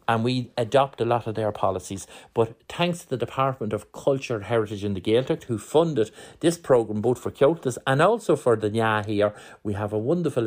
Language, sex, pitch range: English, male, 105-135 Hz